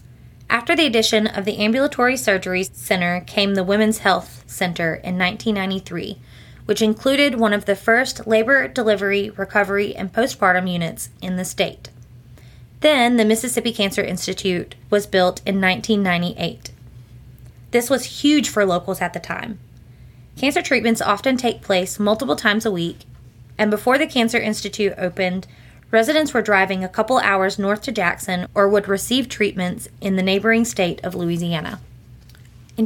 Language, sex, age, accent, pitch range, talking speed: English, female, 20-39, American, 175-225 Hz, 150 wpm